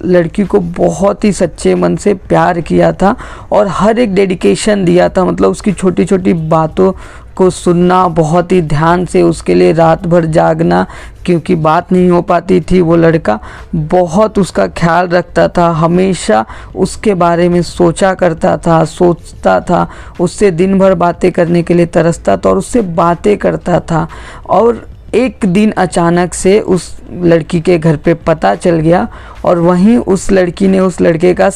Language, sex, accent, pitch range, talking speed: Hindi, female, native, 170-195 Hz, 170 wpm